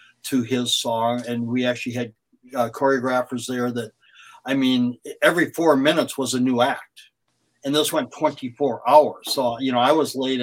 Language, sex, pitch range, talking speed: English, male, 120-140 Hz, 180 wpm